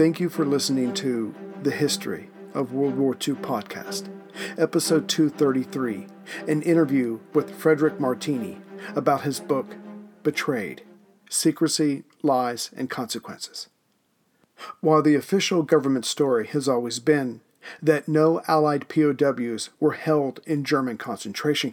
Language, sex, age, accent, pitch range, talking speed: English, male, 50-69, American, 135-155 Hz, 120 wpm